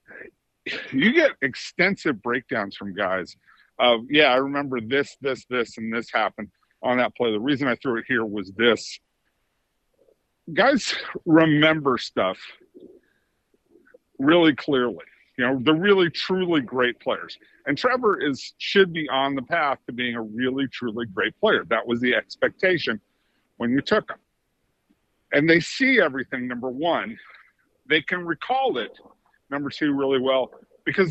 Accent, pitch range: American, 130-185 Hz